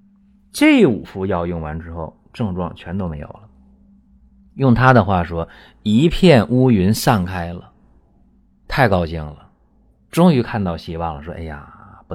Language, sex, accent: Chinese, male, native